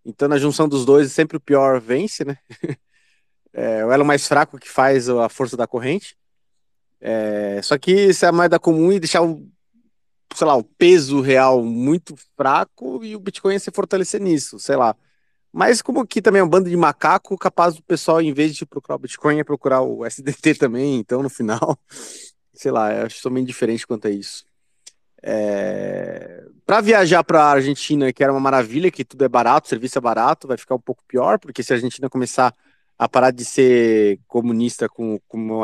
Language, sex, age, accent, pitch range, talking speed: Portuguese, male, 30-49, Brazilian, 115-160 Hz, 195 wpm